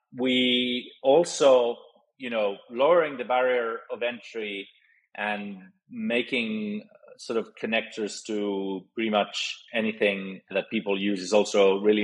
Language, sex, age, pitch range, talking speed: English, male, 30-49, 105-135 Hz, 120 wpm